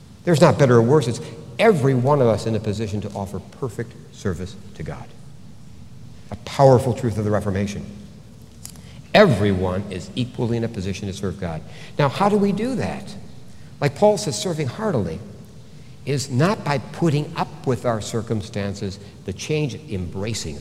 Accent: American